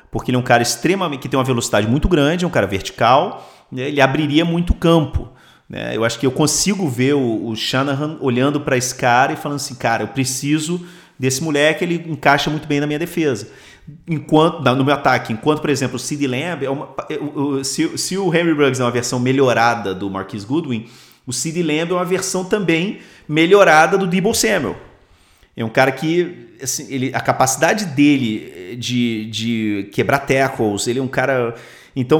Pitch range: 125-160 Hz